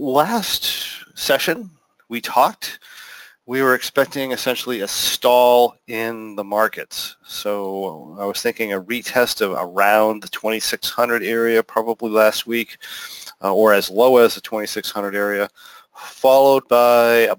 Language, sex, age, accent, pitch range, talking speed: English, male, 40-59, American, 110-130 Hz, 130 wpm